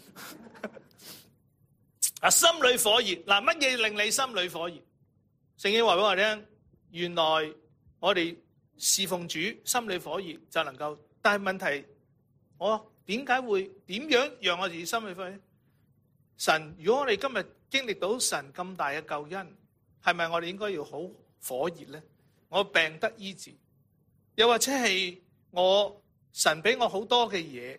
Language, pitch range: English, 150-215 Hz